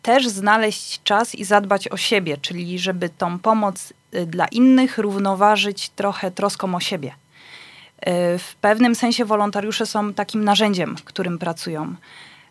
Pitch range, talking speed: 180-220 Hz, 135 wpm